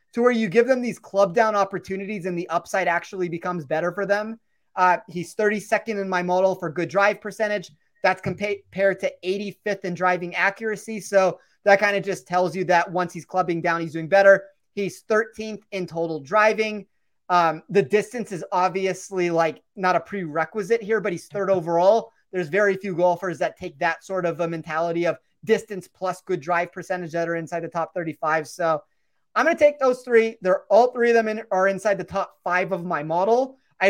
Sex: male